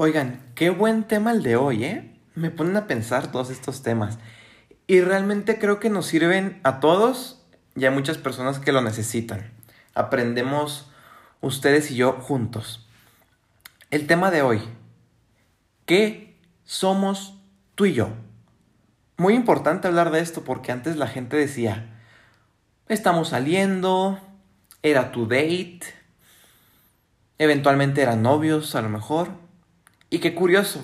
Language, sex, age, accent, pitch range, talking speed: Spanish, male, 30-49, Mexican, 115-165 Hz, 130 wpm